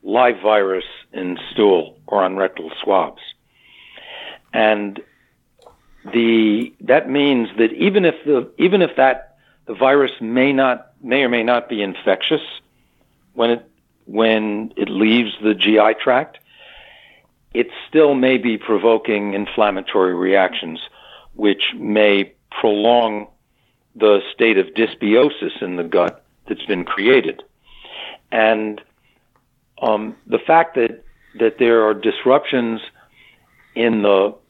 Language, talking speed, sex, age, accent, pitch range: English, 120 wpm, male, 60-79, American, 105-125 Hz